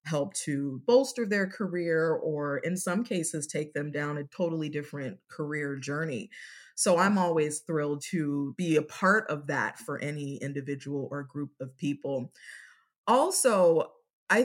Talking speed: 150 wpm